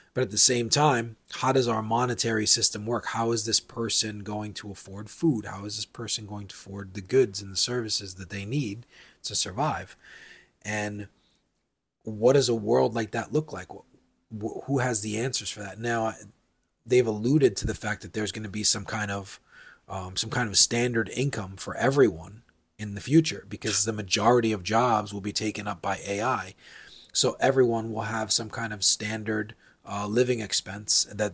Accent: American